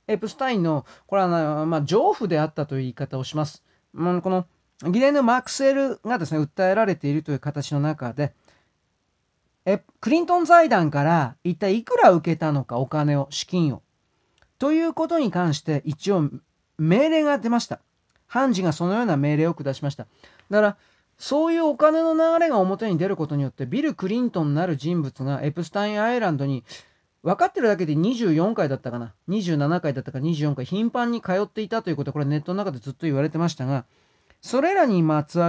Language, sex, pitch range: Japanese, male, 145-210 Hz